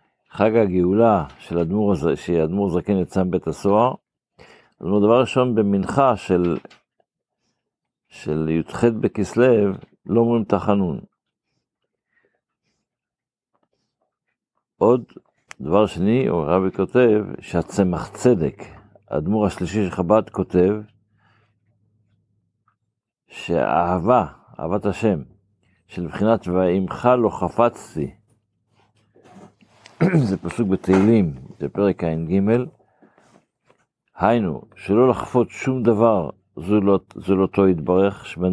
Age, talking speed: 60-79, 90 wpm